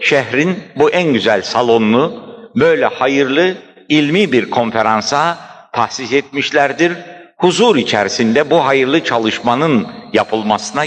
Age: 60-79